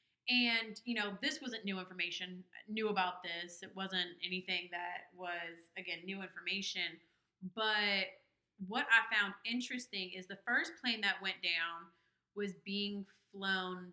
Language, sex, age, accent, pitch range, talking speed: English, female, 30-49, American, 185-215 Hz, 145 wpm